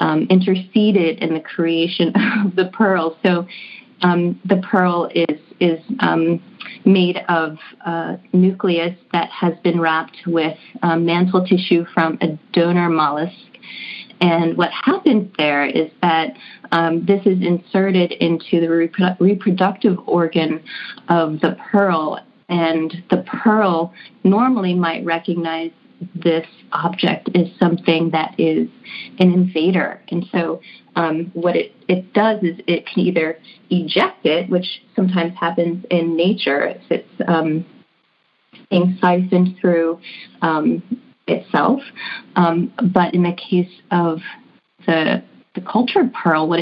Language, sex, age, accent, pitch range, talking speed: English, female, 30-49, American, 170-200 Hz, 130 wpm